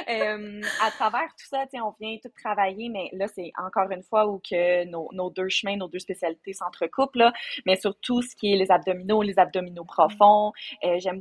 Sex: female